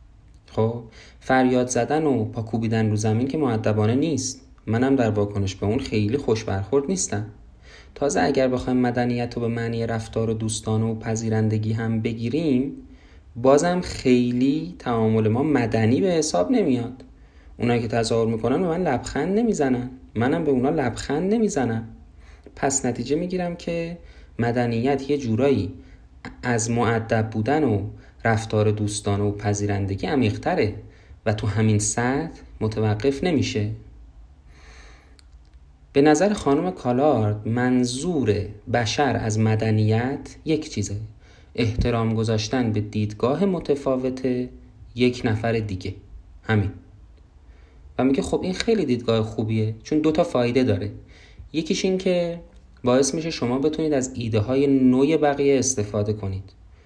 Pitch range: 105-135 Hz